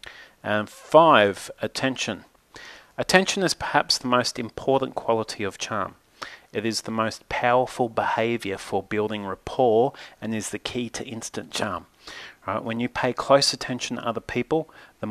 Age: 30-49